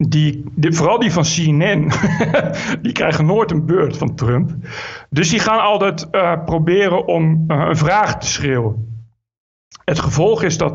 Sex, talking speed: male, 160 wpm